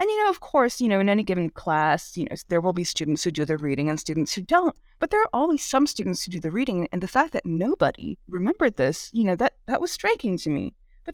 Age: 20-39